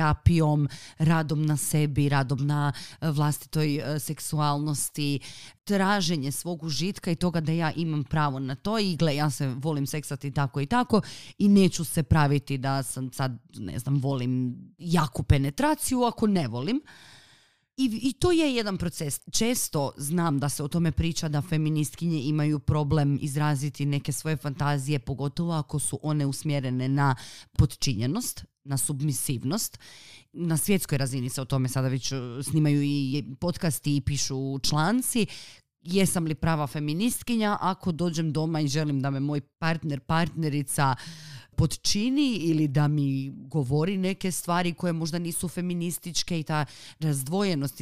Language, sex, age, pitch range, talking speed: Croatian, female, 30-49, 140-170 Hz, 145 wpm